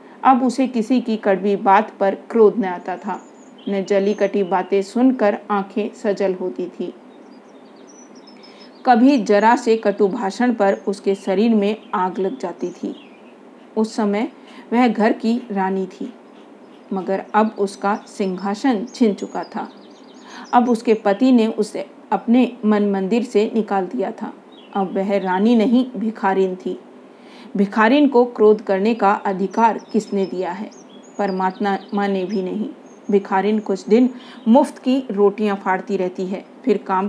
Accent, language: native, Hindi